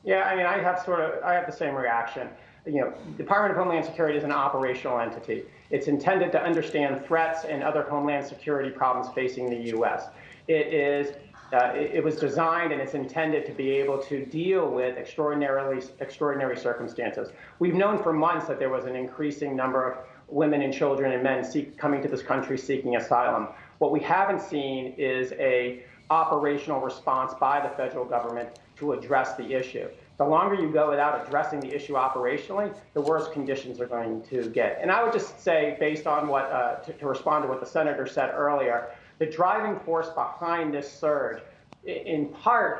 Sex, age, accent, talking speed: male, 40-59, American, 190 wpm